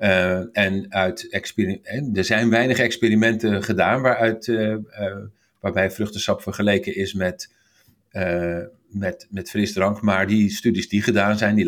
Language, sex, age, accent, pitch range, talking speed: Dutch, male, 50-69, Dutch, 95-115 Hz, 150 wpm